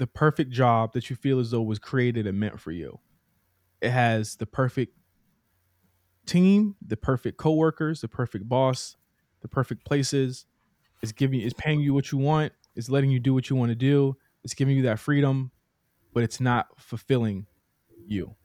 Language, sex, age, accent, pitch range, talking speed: English, male, 20-39, American, 115-145 Hz, 180 wpm